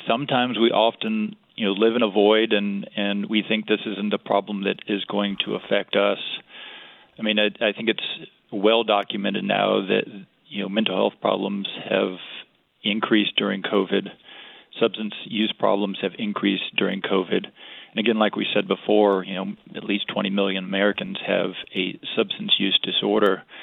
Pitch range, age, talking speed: 100-115 Hz, 40-59, 170 wpm